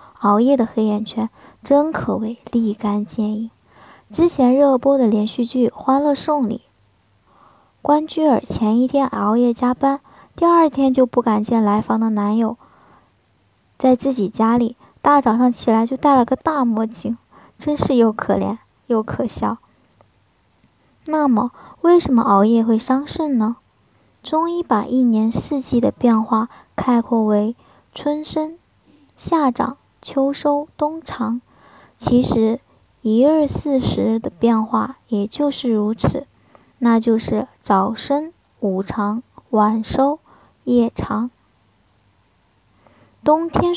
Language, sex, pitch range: Chinese, male, 220-280 Hz